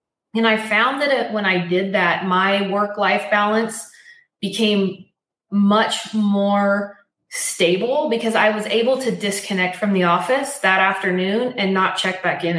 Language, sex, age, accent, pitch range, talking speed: English, female, 20-39, American, 190-225 Hz, 150 wpm